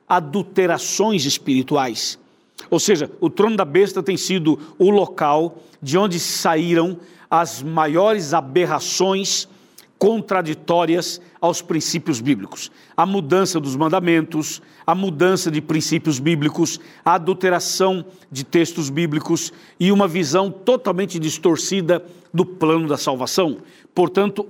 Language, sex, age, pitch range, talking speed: Portuguese, male, 60-79, 165-195 Hz, 115 wpm